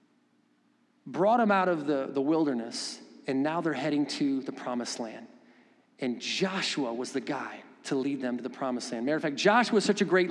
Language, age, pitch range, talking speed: English, 40-59, 160-250 Hz, 205 wpm